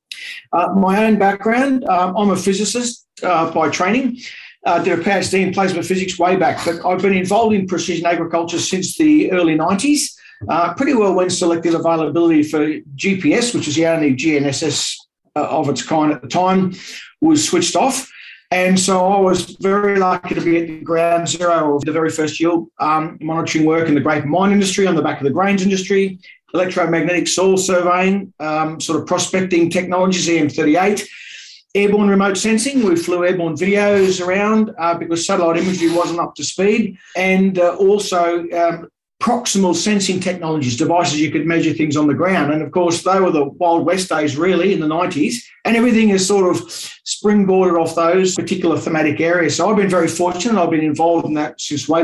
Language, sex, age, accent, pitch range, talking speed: English, male, 50-69, Australian, 165-195 Hz, 185 wpm